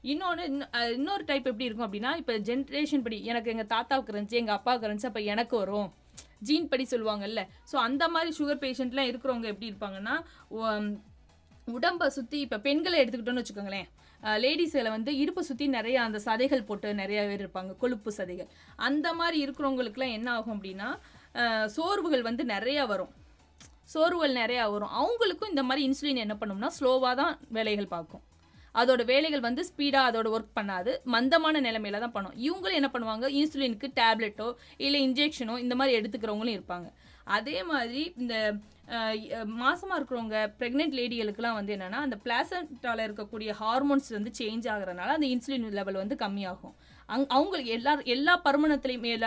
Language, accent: Tamil, native